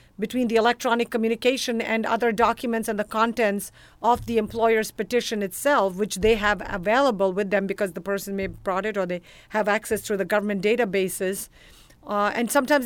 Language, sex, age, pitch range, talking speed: English, female, 50-69, 210-235 Hz, 180 wpm